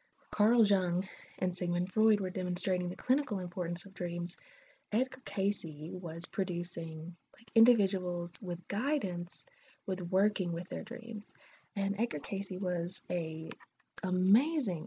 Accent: American